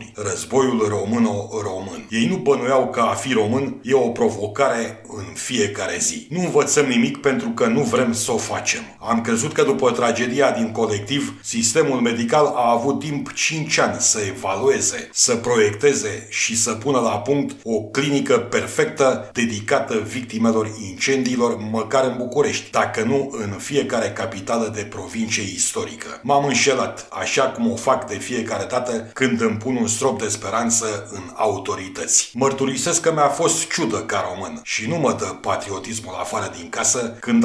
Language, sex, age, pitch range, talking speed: Romanian, male, 40-59, 110-135 Hz, 160 wpm